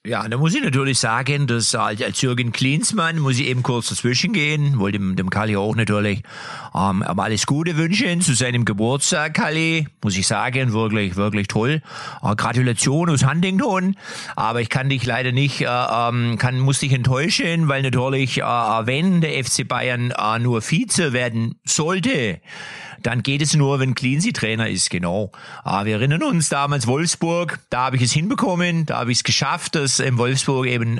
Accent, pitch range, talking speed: German, 120-160 Hz, 185 wpm